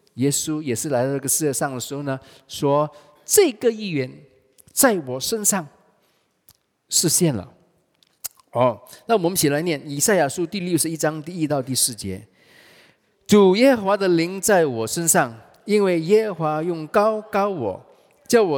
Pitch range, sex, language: 130-190 Hz, male, English